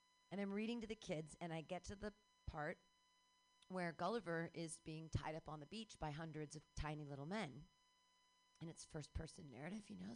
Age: 30-49